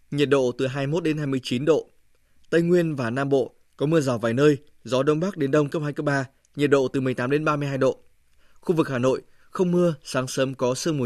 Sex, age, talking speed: male, 20-39, 240 wpm